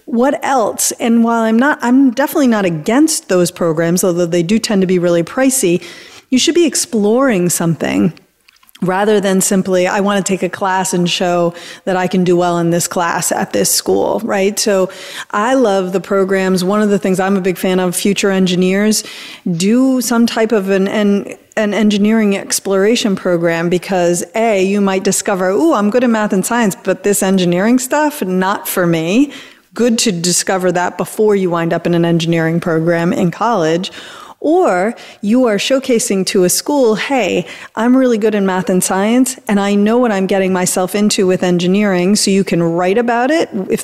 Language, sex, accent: English, female, American